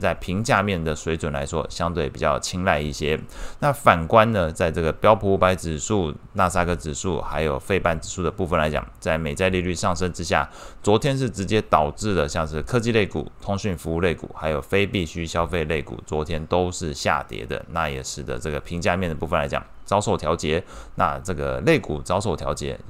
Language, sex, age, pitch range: Chinese, male, 20-39, 80-100 Hz